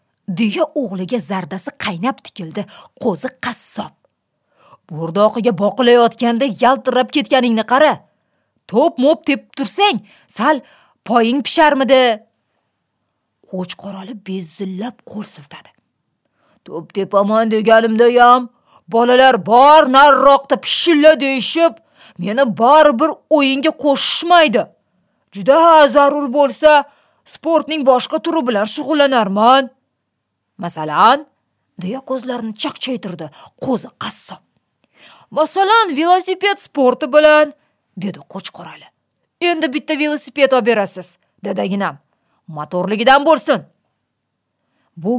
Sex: female